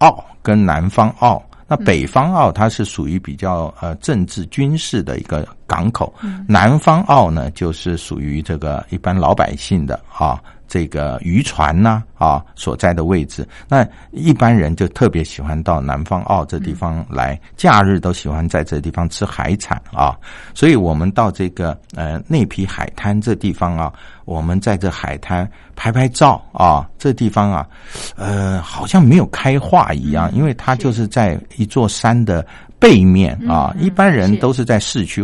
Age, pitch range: 60-79, 80-110 Hz